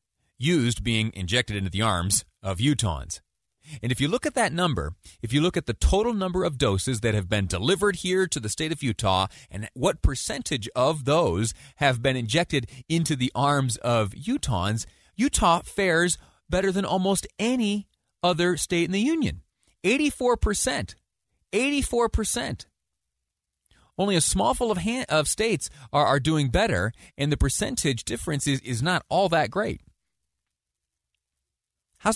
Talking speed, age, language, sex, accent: 160 wpm, 30-49, English, male, American